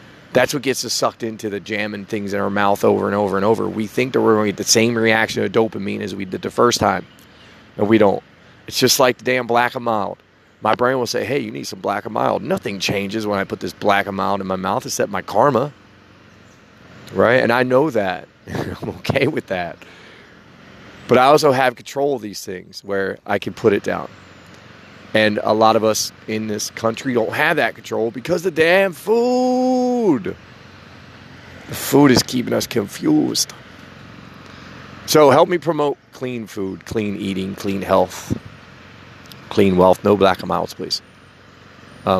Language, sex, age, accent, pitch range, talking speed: English, male, 30-49, American, 100-125 Hz, 195 wpm